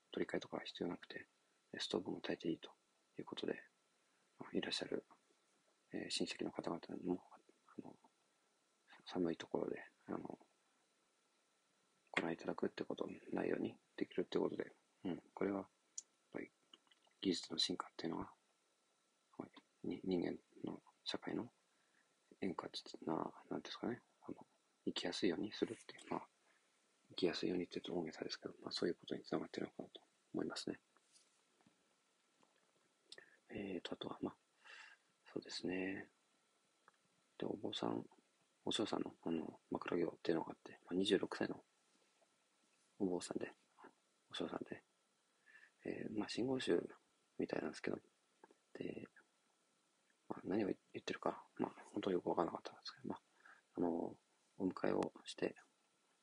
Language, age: Japanese, 40-59